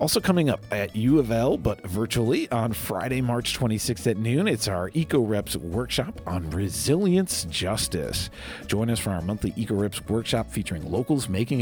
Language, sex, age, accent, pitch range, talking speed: English, male, 40-59, American, 95-135 Hz, 170 wpm